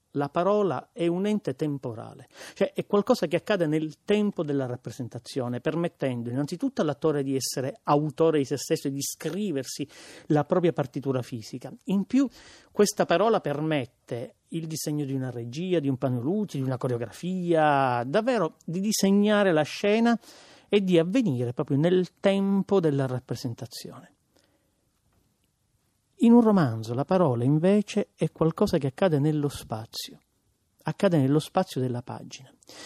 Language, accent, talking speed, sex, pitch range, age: Italian, native, 140 wpm, male, 135-190 Hz, 40-59